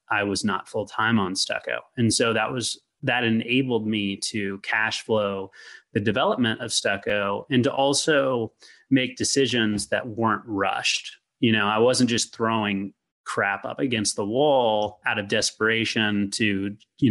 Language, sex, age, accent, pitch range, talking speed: English, male, 30-49, American, 105-130 Hz, 160 wpm